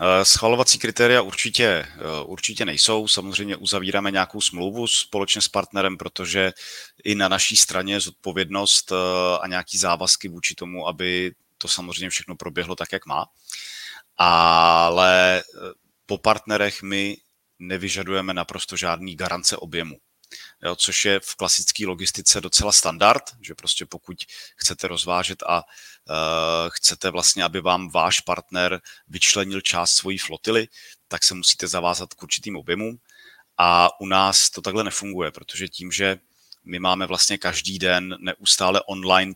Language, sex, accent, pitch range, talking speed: Czech, male, native, 90-100 Hz, 135 wpm